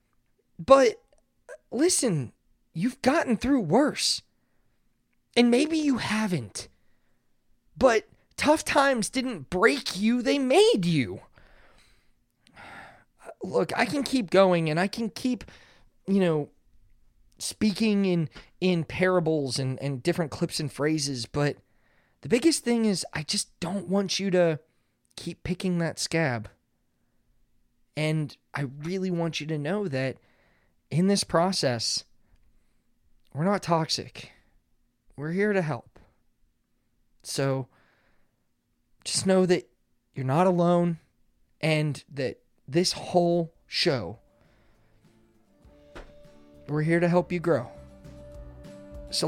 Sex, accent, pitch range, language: male, American, 125-195 Hz, English